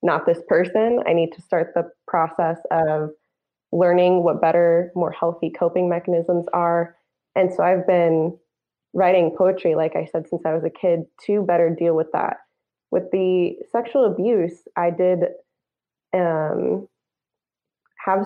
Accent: American